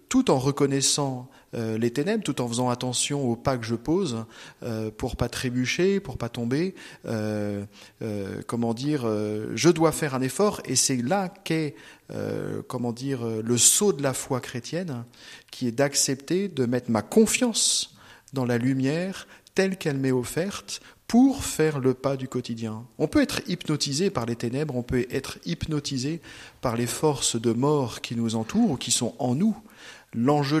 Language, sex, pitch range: French, male, 120-150 Hz